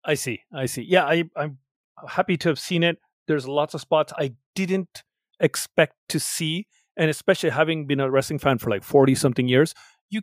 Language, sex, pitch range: English, male, 135-180 Hz